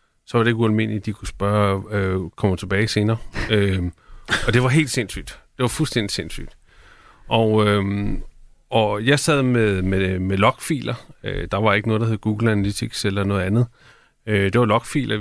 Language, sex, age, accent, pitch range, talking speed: Danish, male, 30-49, native, 100-120 Hz, 195 wpm